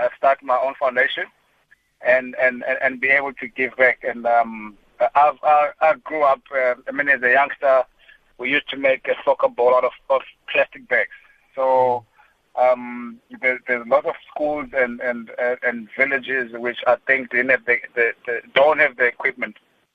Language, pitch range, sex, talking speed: English, 120-140 Hz, male, 185 wpm